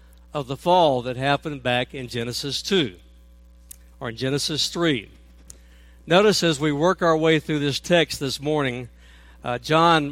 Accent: American